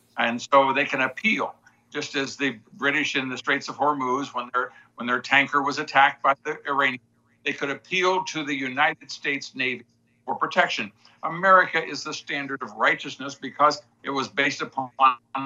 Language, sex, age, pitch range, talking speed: English, male, 60-79, 125-155 Hz, 175 wpm